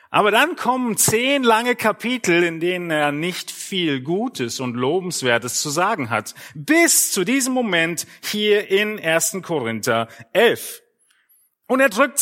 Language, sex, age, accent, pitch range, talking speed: German, male, 40-59, German, 160-240 Hz, 145 wpm